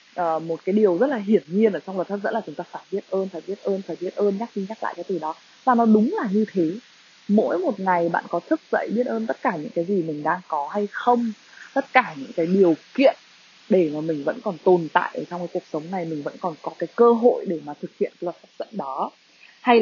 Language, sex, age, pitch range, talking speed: Vietnamese, female, 20-39, 175-230 Hz, 280 wpm